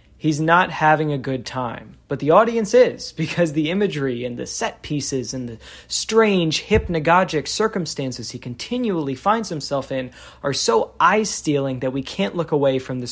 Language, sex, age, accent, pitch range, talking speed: English, male, 20-39, American, 130-185 Hz, 170 wpm